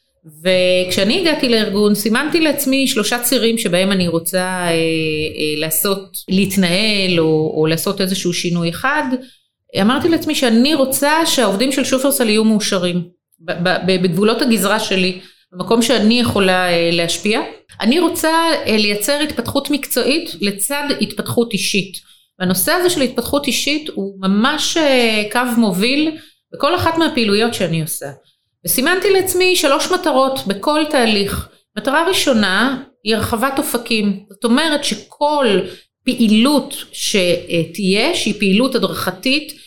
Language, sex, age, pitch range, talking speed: Hebrew, female, 30-49, 195-285 Hz, 120 wpm